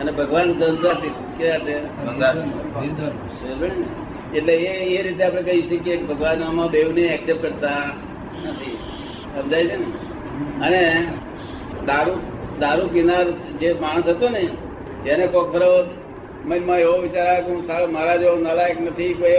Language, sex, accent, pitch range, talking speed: Gujarati, male, native, 150-175 Hz, 70 wpm